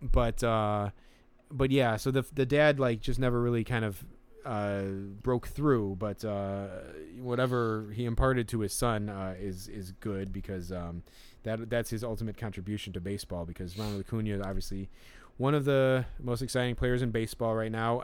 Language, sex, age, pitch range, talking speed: English, male, 30-49, 105-125 Hz, 175 wpm